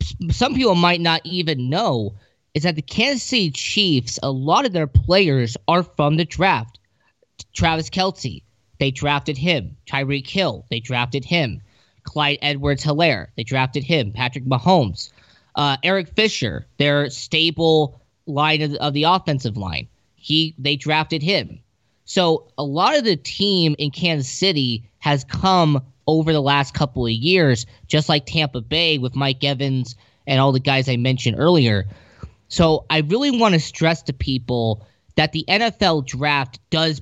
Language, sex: English, male